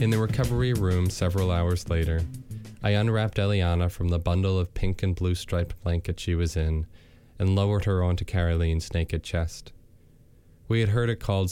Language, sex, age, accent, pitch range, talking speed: English, male, 20-39, American, 85-100 Hz, 175 wpm